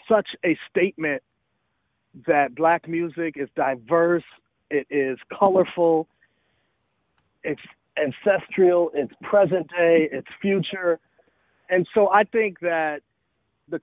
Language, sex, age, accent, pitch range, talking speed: English, male, 40-59, American, 140-190 Hz, 105 wpm